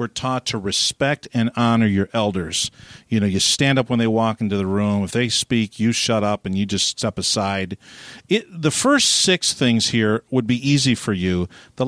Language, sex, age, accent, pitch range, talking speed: English, male, 50-69, American, 115-155 Hz, 205 wpm